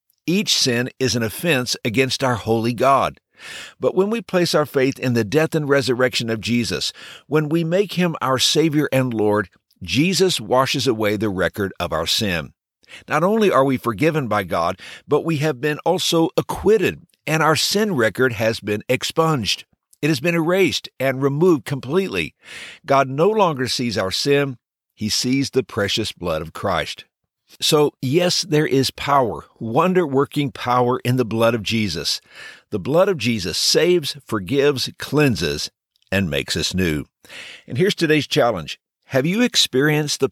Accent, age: American, 60-79